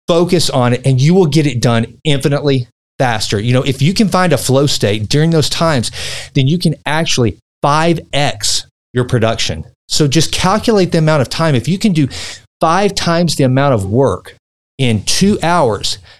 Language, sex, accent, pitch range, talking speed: English, male, American, 120-160 Hz, 185 wpm